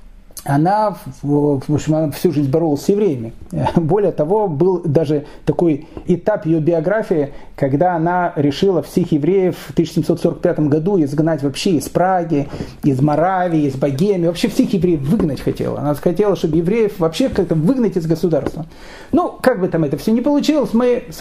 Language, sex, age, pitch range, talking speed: Russian, male, 40-59, 155-215 Hz, 160 wpm